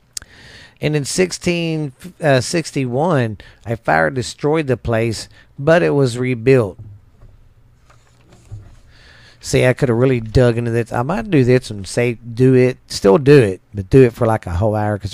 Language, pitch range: English, 110-140 Hz